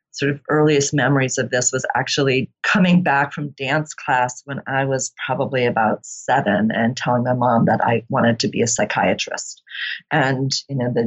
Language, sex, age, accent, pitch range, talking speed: English, female, 40-59, American, 125-150 Hz, 185 wpm